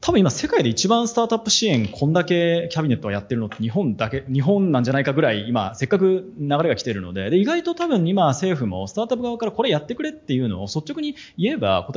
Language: Japanese